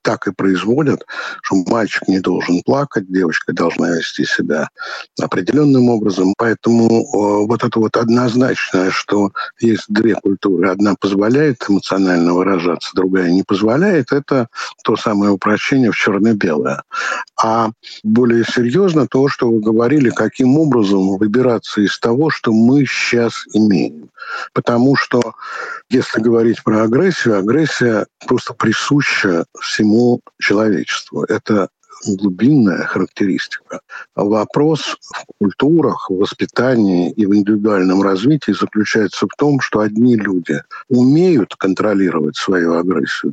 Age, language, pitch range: 60-79, Russian, 100-125 Hz